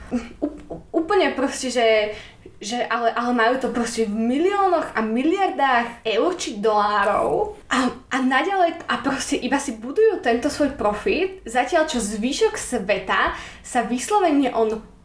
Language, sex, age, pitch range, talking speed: Slovak, female, 20-39, 225-320 Hz, 145 wpm